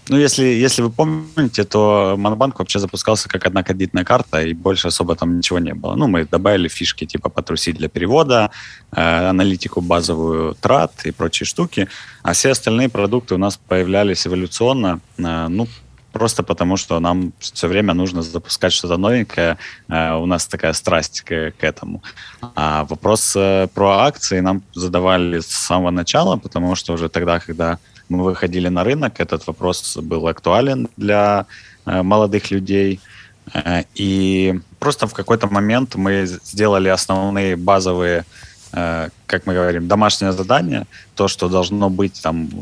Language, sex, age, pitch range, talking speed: Ukrainian, male, 20-39, 85-105 Hz, 150 wpm